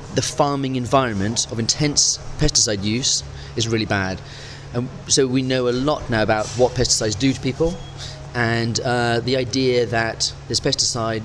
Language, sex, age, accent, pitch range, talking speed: English, male, 30-49, British, 115-140 Hz, 160 wpm